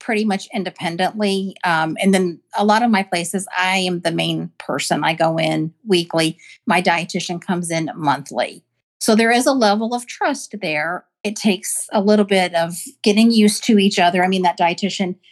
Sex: female